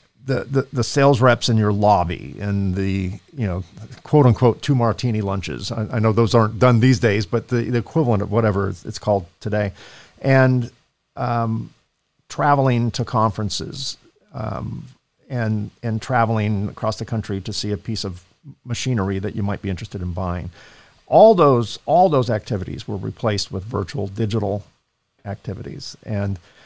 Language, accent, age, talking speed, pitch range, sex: English, American, 50-69, 160 wpm, 100-130 Hz, male